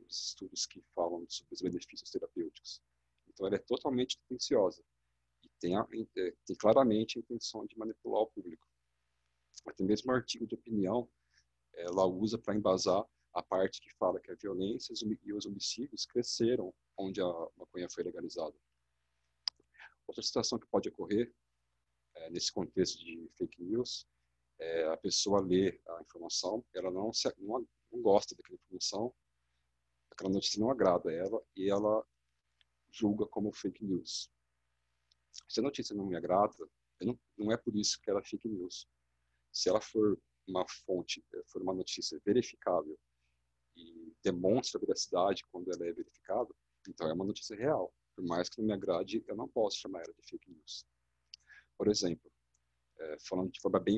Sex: male